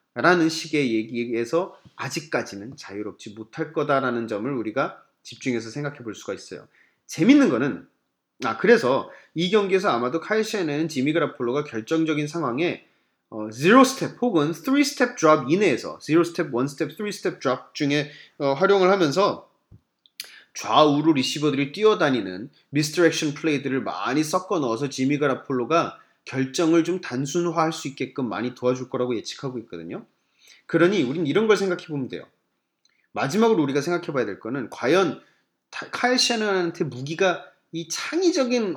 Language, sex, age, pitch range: Korean, male, 30-49, 130-190 Hz